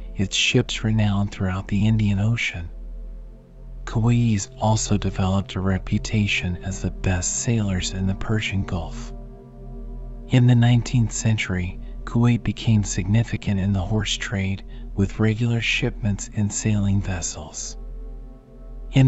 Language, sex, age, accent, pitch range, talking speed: English, male, 40-59, American, 95-115 Hz, 120 wpm